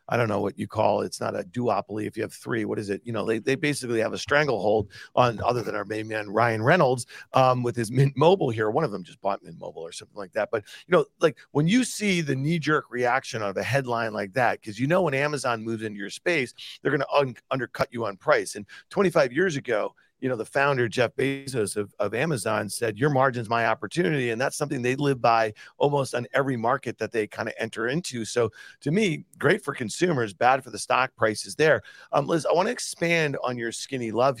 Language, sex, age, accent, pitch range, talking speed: English, male, 40-59, American, 110-145 Hz, 245 wpm